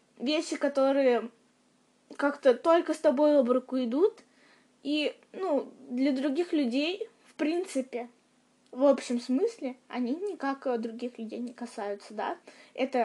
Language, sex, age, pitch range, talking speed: Russian, female, 20-39, 245-285 Hz, 125 wpm